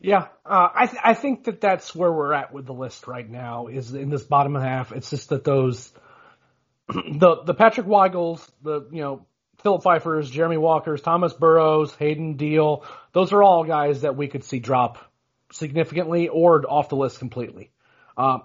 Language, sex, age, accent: English, male, 30-49, American